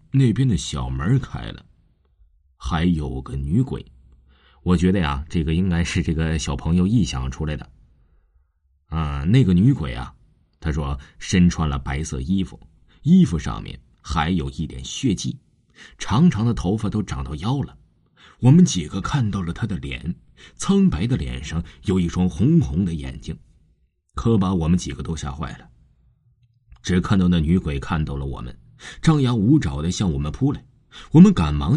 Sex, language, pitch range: male, Chinese, 75-120 Hz